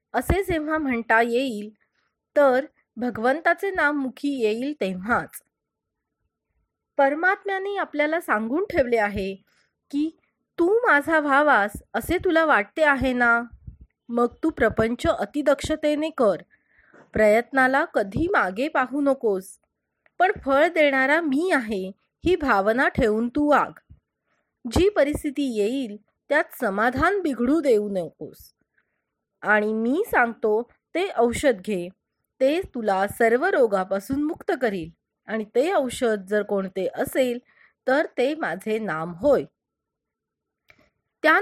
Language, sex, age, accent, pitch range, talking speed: Marathi, female, 30-49, native, 220-310 Hz, 110 wpm